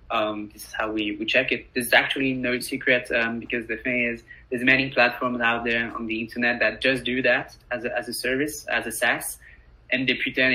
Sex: male